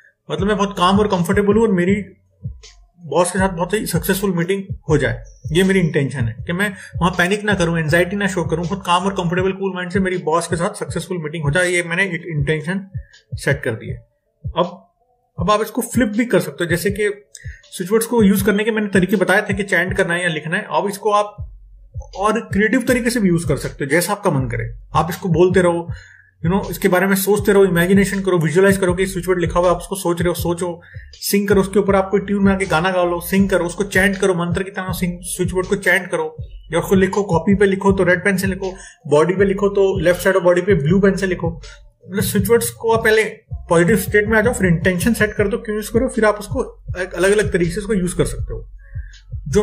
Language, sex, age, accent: Hindi, male, 30-49, native